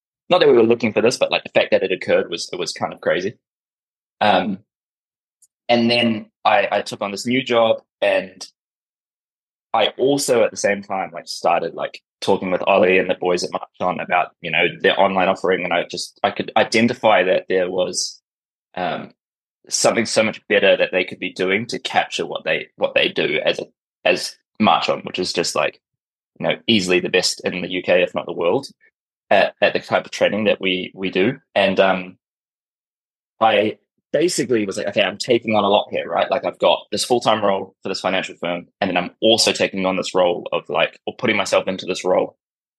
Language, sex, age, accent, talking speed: English, male, 20-39, Australian, 215 wpm